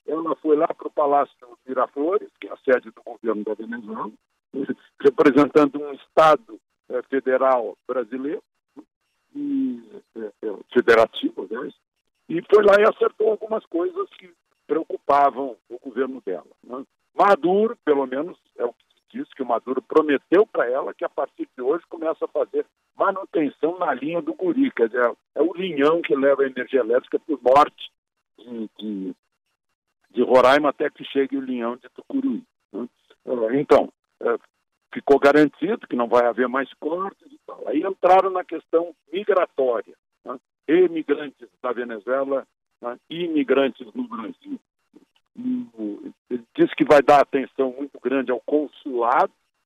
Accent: Brazilian